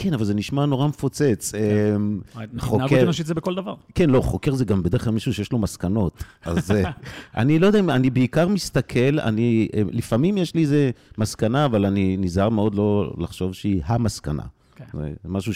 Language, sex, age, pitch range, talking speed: Hebrew, male, 50-69, 90-125 Hz, 175 wpm